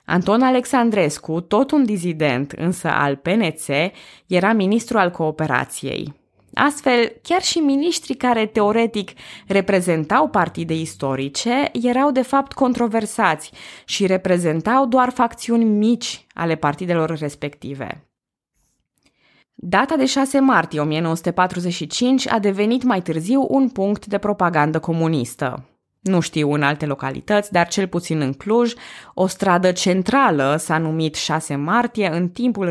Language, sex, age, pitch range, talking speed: Romanian, female, 20-39, 160-230 Hz, 120 wpm